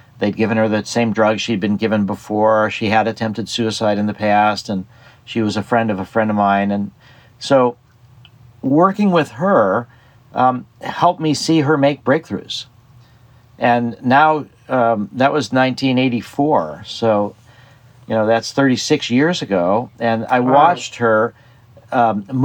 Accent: American